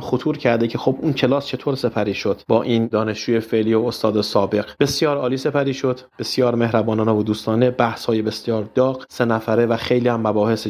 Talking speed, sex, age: 185 wpm, male, 30-49